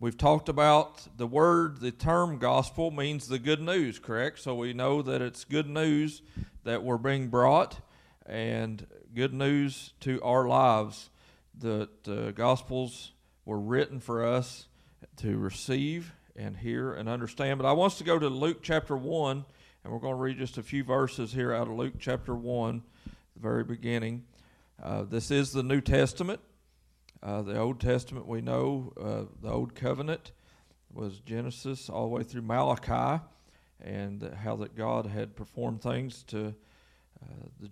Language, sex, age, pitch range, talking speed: English, male, 40-59, 110-145 Hz, 165 wpm